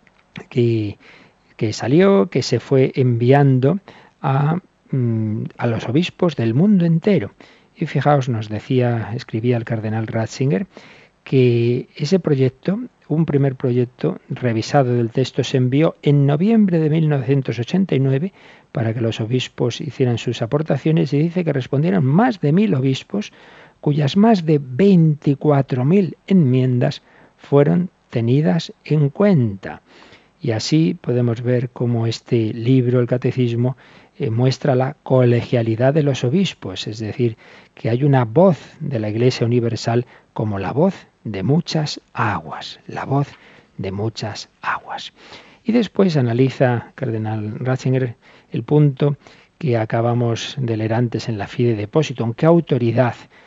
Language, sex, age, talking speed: Spanish, male, 50-69, 130 wpm